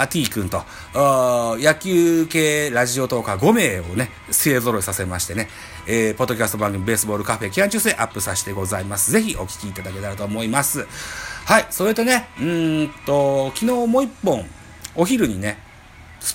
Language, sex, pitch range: Japanese, male, 95-155 Hz